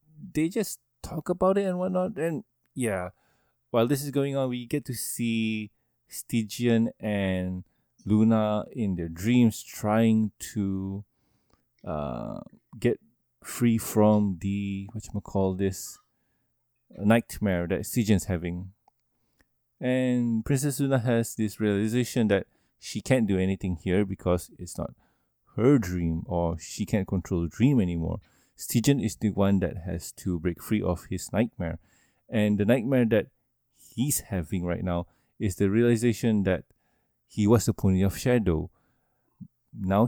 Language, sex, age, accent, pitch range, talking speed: English, male, 20-39, Malaysian, 95-120 Hz, 140 wpm